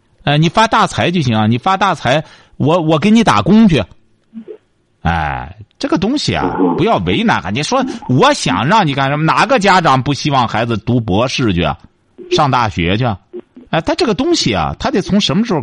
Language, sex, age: Chinese, male, 50-69